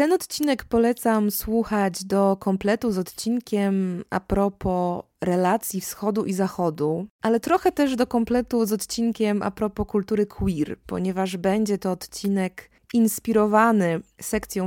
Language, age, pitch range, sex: Polish, 20-39, 180-215 Hz, female